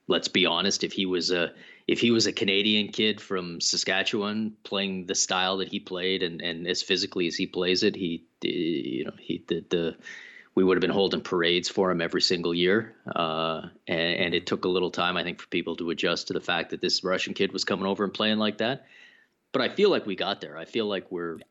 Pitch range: 85-100 Hz